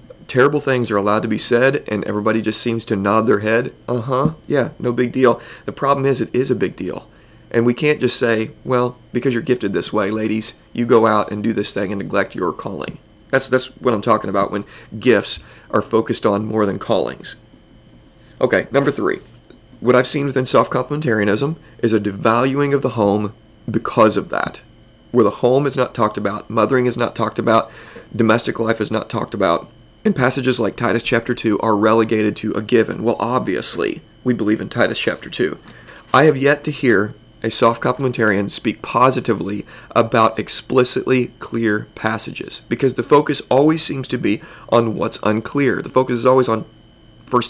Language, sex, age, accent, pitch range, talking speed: English, male, 40-59, American, 110-130 Hz, 190 wpm